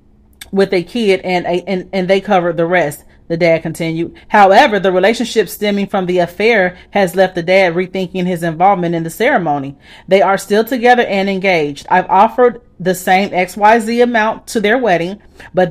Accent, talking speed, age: American, 180 wpm, 30-49